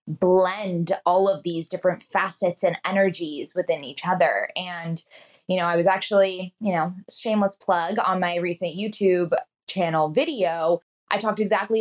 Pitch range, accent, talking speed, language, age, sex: 175-220 Hz, American, 155 wpm, English, 20-39, female